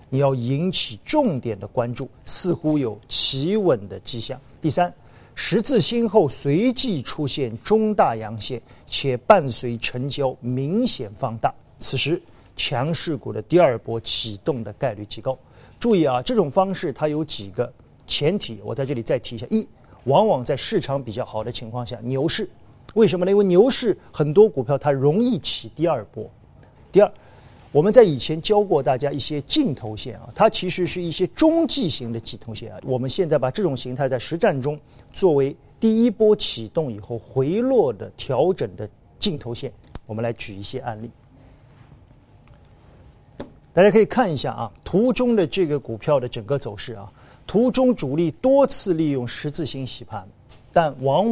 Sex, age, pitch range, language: male, 50-69, 120-185 Hz, Chinese